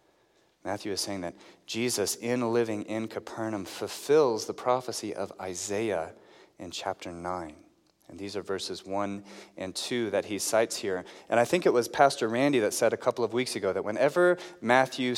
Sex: male